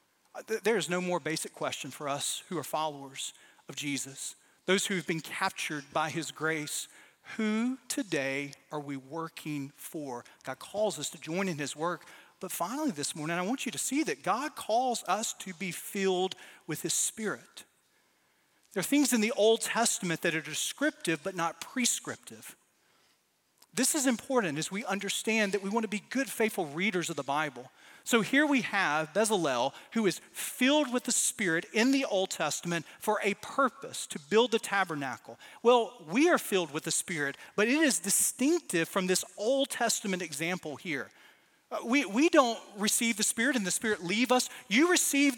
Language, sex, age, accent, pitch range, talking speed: English, male, 40-59, American, 165-255 Hz, 180 wpm